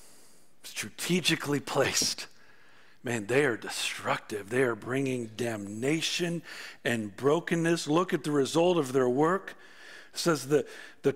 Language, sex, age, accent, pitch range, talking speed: English, male, 50-69, American, 145-225 Hz, 125 wpm